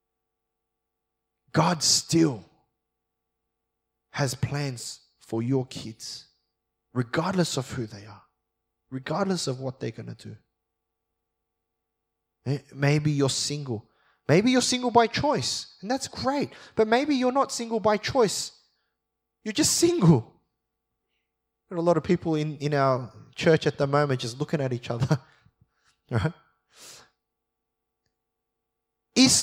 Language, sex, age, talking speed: English, male, 20-39, 120 wpm